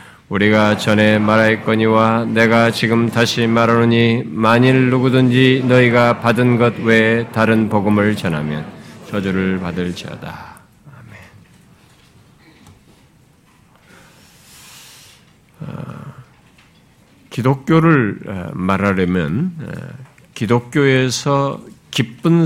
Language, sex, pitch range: Korean, male, 110-150 Hz